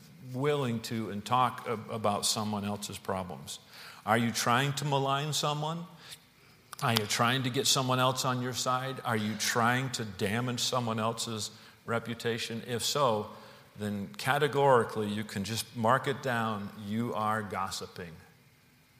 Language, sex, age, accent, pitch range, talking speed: English, male, 50-69, American, 105-135 Hz, 140 wpm